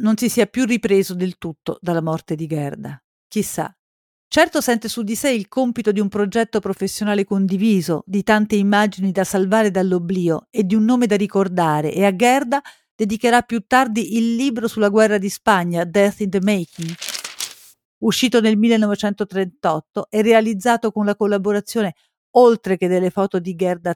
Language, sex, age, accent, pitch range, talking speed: Italian, female, 50-69, native, 185-225 Hz, 165 wpm